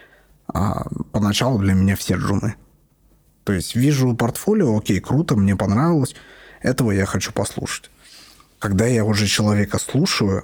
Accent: native